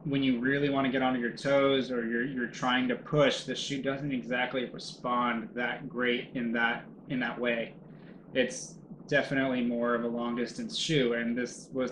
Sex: male